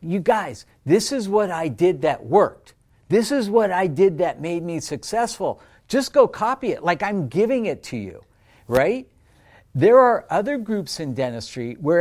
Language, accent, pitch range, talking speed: English, American, 130-195 Hz, 180 wpm